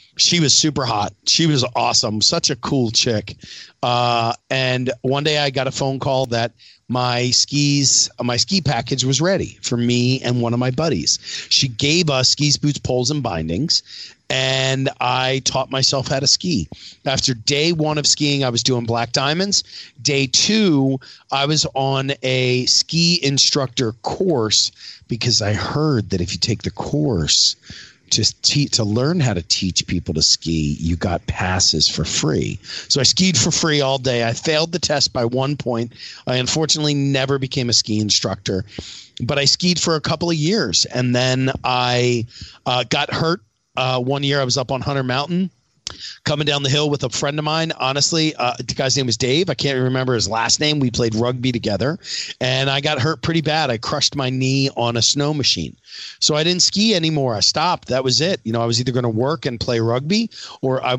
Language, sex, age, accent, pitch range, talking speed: English, male, 40-59, American, 120-145 Hz, 195 wpm